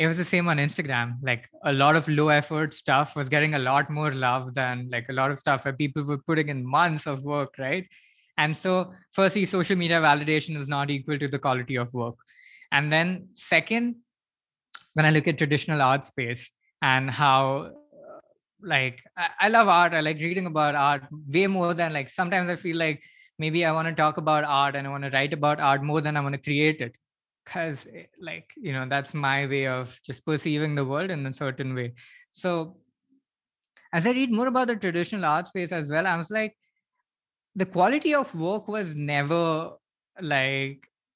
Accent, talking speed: Indian, 200 wpm